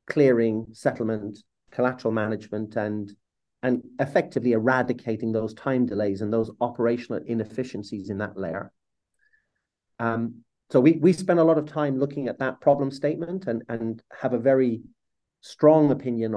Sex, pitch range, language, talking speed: male, 110-130 Hz, English, 145 wpm